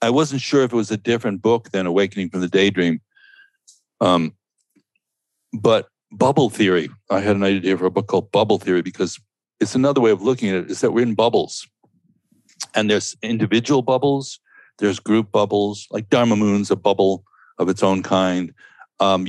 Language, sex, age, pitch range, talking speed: English, male, 60-79, 90-105 Hz, 180 wpm